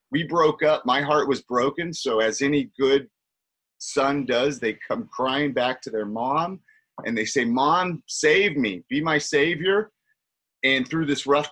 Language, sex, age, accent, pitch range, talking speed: English, male, 30-49, American, 125-185 Hz, 170 wpm